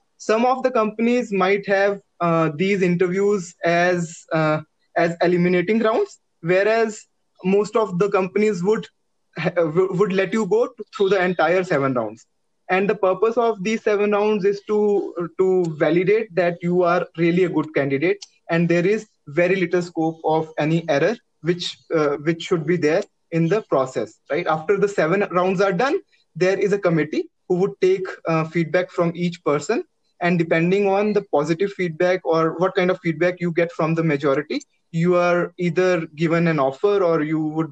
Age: 20-39